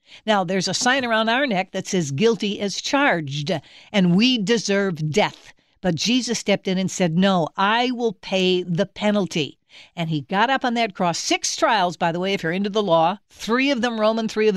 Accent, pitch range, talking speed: American, 175-215 Hz, 210 wpm